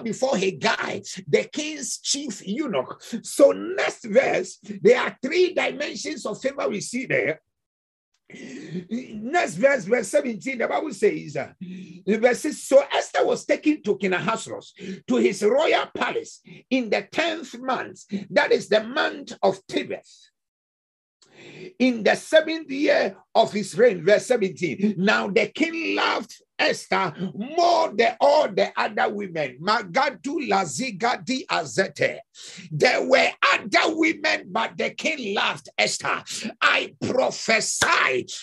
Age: 50-69